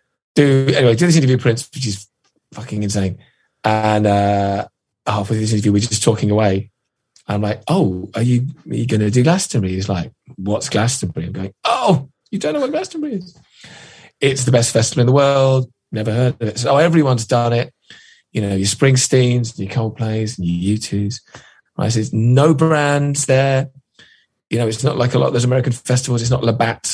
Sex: male